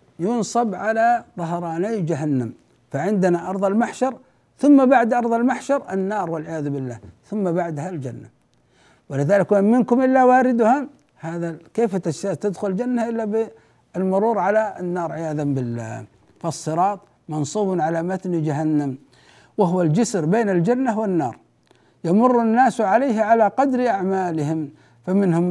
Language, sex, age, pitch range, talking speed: Arabic, male, 60-79, 165-200 Hz, 115 wpm